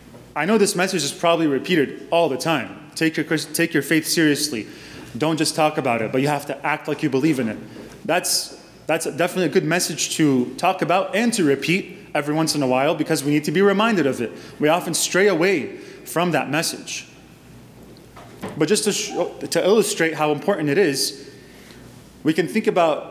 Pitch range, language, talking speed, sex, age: 140-175 Hz, English, 200 wpm, male, 20-39